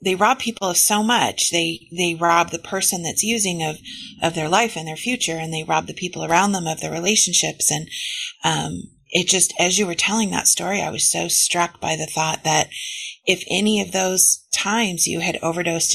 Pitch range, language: 165-210 Hz, English